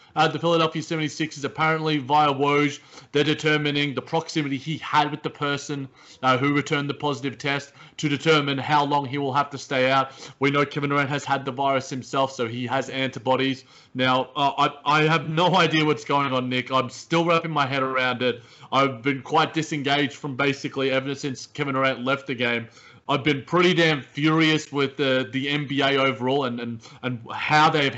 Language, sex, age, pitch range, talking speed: English, male, 20-39, 130-160 Hz, 195 wpm